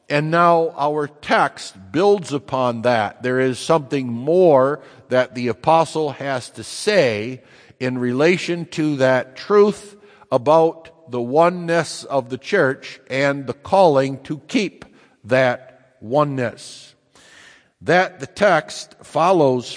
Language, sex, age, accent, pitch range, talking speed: English, male, 60-79, American, 130-170 Hz, 120 wpm